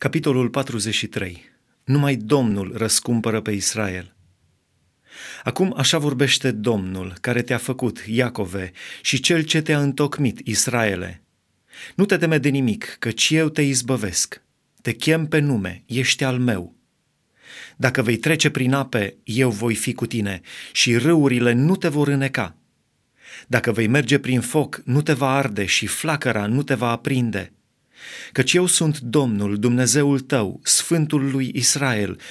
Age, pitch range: 30-49, 115-145 Hz